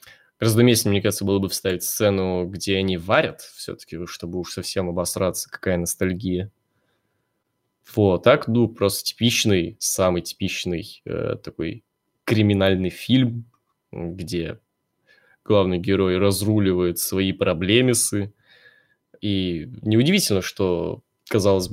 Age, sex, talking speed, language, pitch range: 20-39, male, 105 wpm, Russian, 90-105 Hz